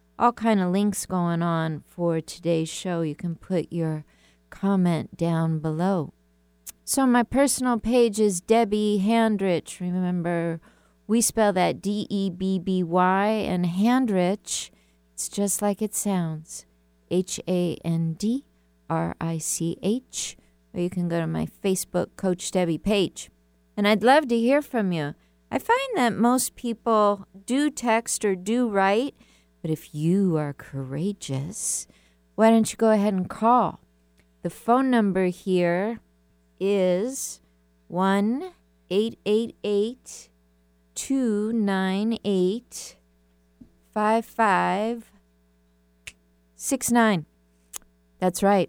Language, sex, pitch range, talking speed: English, female, 155-220 Hz, 100 wpm